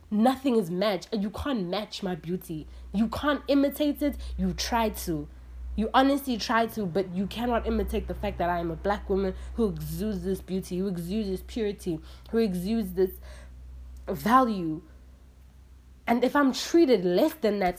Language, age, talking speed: English, 20-39, 170 wpm